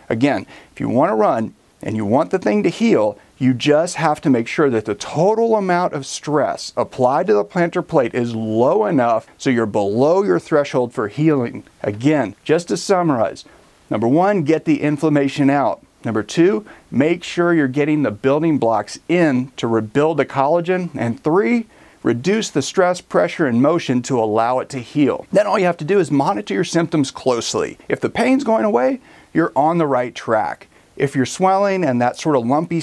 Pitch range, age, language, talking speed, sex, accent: 130-180 Hz, 40-59, English, 195 wpm, male, American